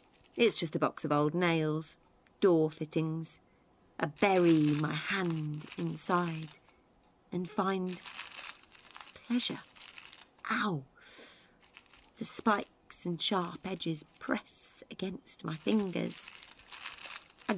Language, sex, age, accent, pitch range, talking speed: English, female, 40-59, British, 160-215 Hz, 95 wpm